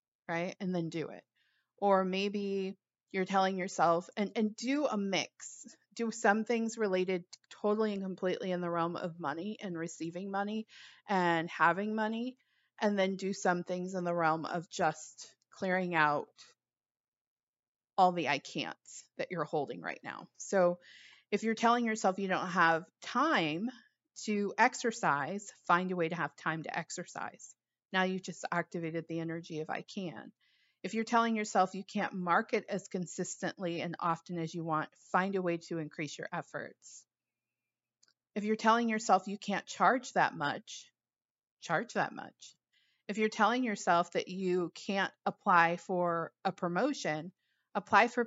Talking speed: 160 wpm